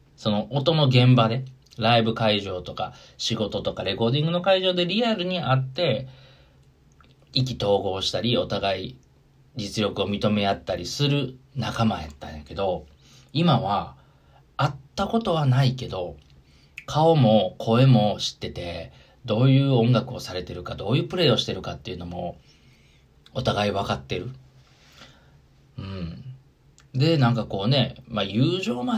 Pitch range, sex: 100-135 Hz, male